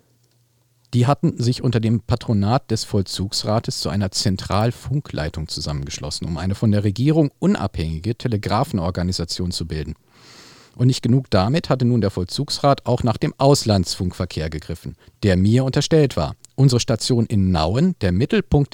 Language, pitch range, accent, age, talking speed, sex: German, 105-140 Hz, German, 50-69, 140 wpm, male